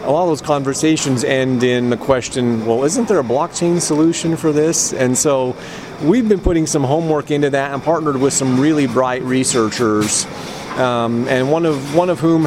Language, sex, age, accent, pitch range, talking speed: English, male, 30-49, American, 120-140 Hz, 185 wpm